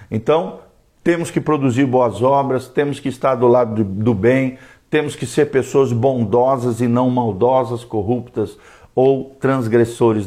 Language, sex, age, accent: Portuguese, male, 50-69, Brazilian